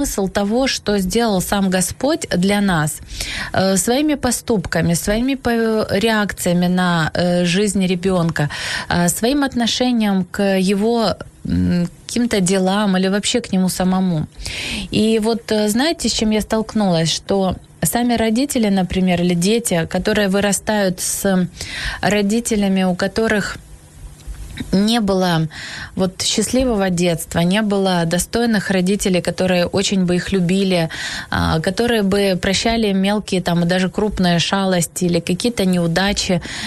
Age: 20-39